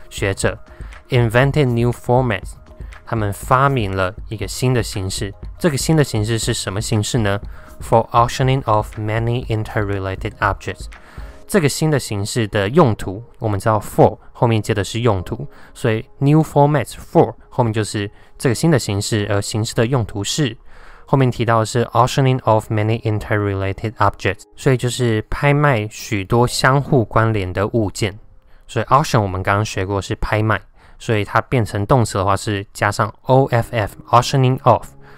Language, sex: Chinese, male